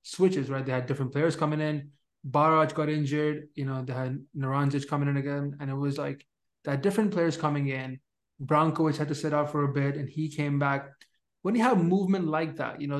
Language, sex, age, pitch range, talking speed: English, male, 20-39, 140-155 Hz, 220 wpm